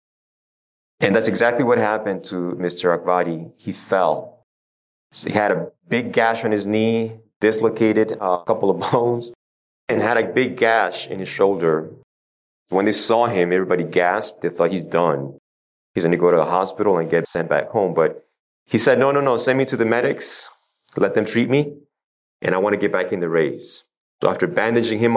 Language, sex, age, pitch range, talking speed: English, male, 30-49, 90-120 Hz, 195 wpm